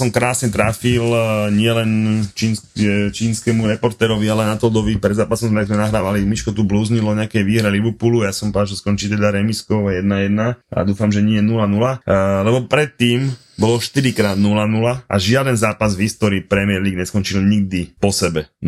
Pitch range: 90-110 Hz